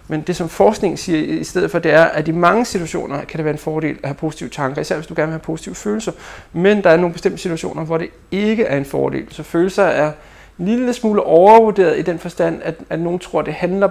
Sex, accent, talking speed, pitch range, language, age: male, native, 260 wpm, 155-185 Hz, Danish, 30-49